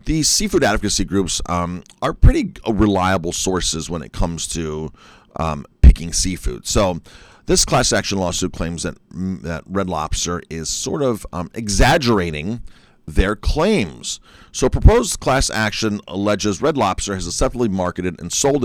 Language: English